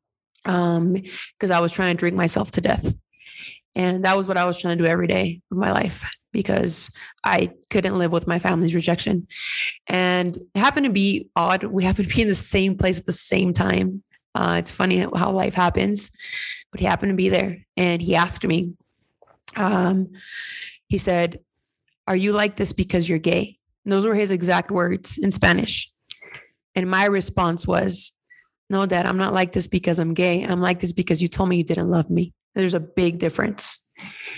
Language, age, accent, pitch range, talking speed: English, 20-39, American, 175-195 Hz, 195 wpm